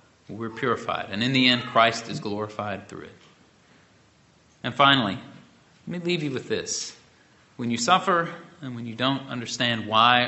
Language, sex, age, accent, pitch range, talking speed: English, male, 30-49, American, 120-170 Hz, 165 wpm